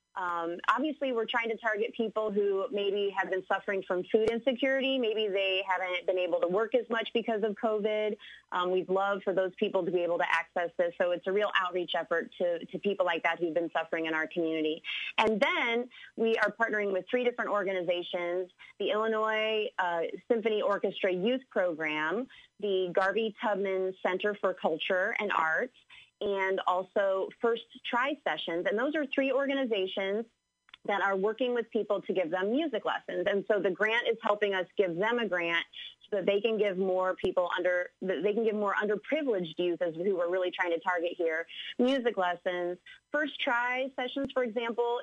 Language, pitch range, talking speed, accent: English, 180-225 Hz, 190 wpm, American